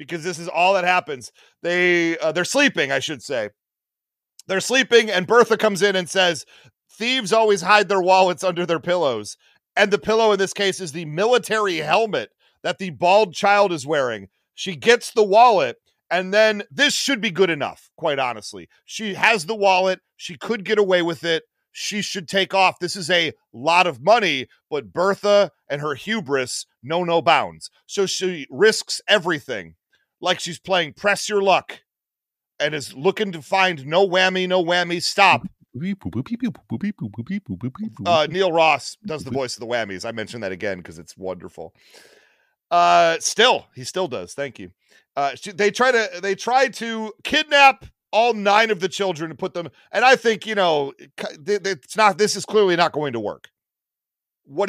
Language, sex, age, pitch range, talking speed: English, male, 40-59, 165-210 Hz, 180 wpm